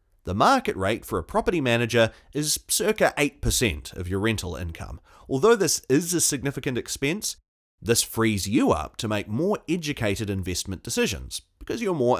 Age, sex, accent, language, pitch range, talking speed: 30-49, male, Australian, English, 95-130 Hz, 160 wpm